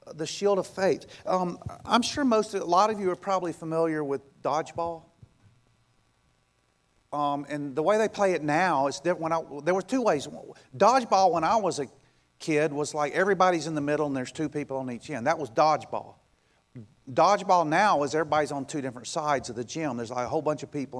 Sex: male